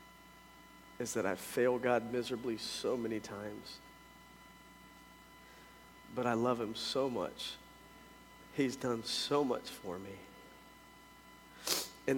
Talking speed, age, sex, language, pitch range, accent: 110 wpm, 40-59, male, English, 120-155 Hz, American